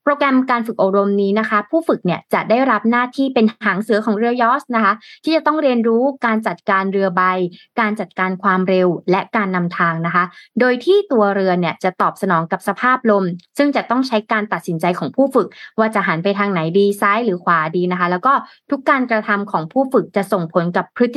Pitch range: 185-235 Hz